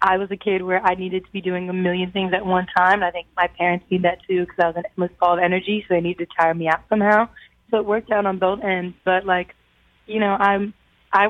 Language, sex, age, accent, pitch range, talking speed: English, female, 20-39, American, 175-195 Hz, 280 wpm